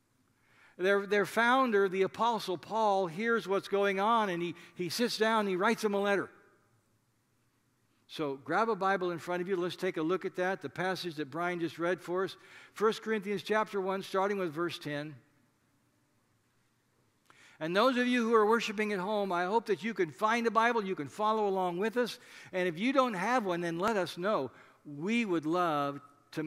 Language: English